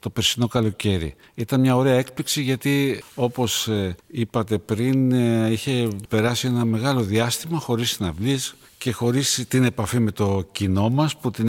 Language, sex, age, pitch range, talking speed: Greek, male, 50-69, 110-150 Hz, 155 wpm